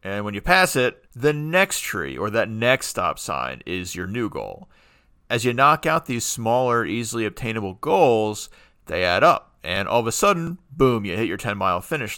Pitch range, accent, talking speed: 105-135 Hz, American, 195 wpm